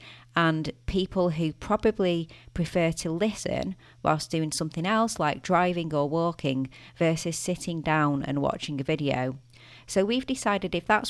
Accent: British